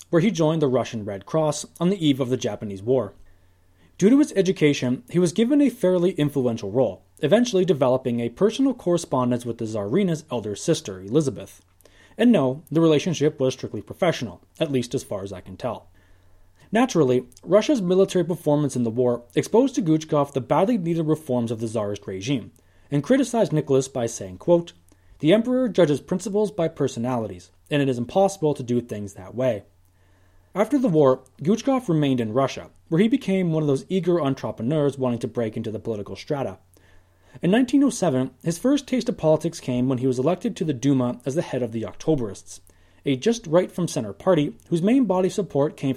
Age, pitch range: 30-49, 110-175 Hz